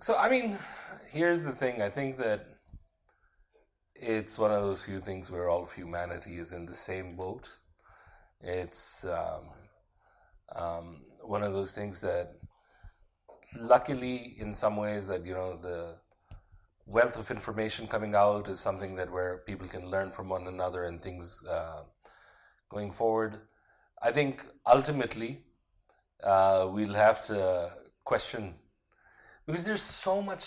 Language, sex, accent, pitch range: English, male, Indian, 95-120 Hz